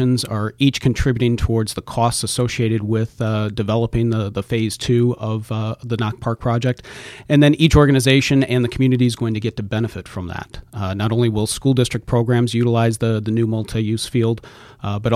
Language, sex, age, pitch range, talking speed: English, male, 40-59, 105-125 Hz, 200 wpm